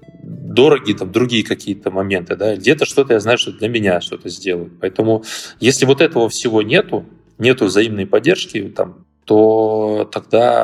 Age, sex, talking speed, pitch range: 20-39, male, 150 wpm, 100-120 Hz